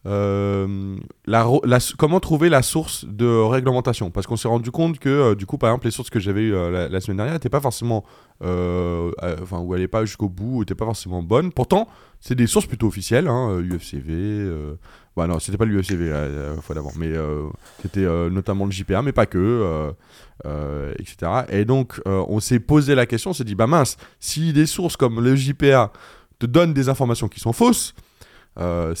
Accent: French